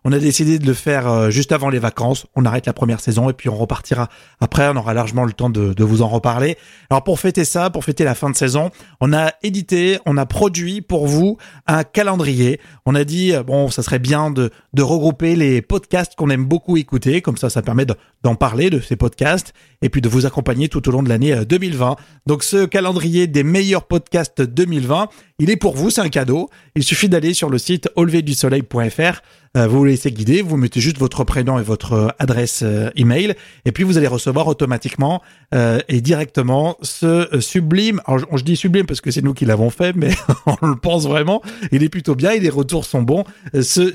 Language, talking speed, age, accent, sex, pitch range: French, 215 wpm, 30-49, French, male, 130-170 Hz